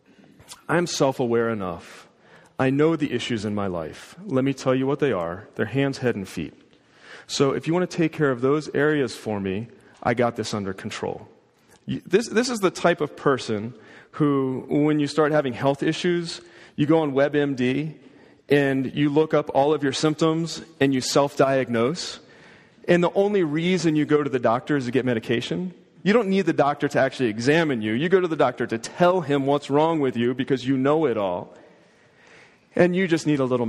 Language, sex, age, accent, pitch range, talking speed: English, male, 30-49, American, 115-155 Hz, 200 wpm